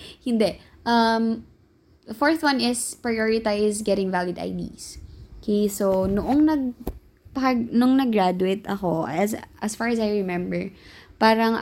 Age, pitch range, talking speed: 20-39, 175-215 Hz, 130 wpm